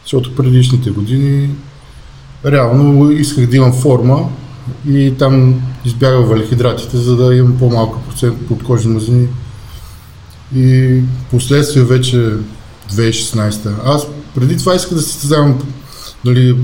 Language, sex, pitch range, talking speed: Bulgarian, male, 115-135 Hz, 110 wpm